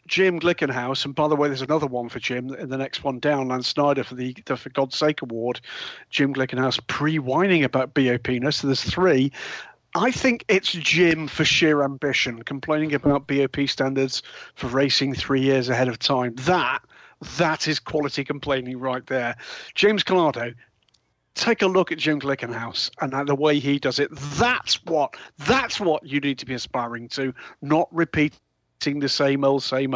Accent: British